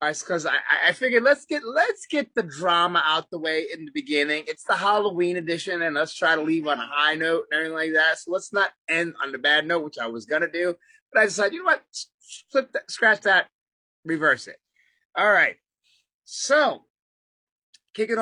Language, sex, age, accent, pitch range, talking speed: English, male, 30-49, American, 150-195 Hz, 200 wpm